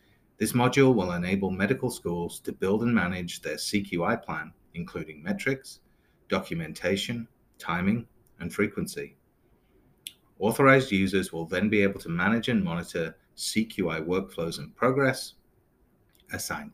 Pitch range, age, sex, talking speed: 85-115 Hz, 30-49, male, 120 wpm